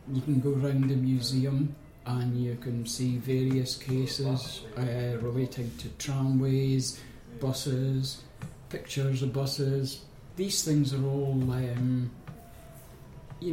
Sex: male